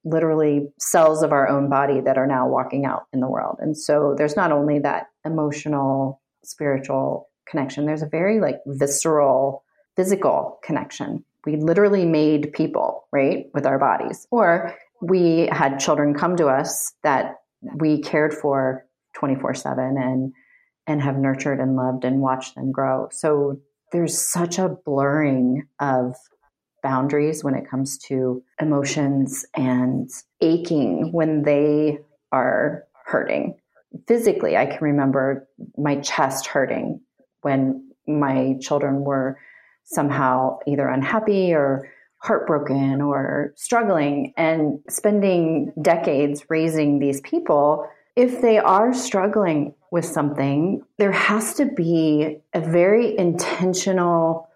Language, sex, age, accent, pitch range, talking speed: English, female, 30-49, American, 135-165 Hz, 130 wpm